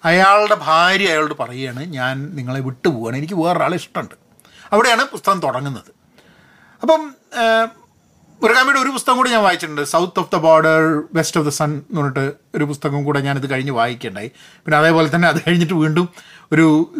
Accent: native